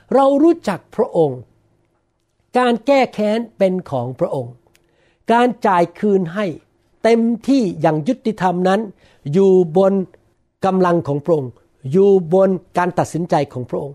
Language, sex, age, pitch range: Thai, male, 60-79, 150-215 Hz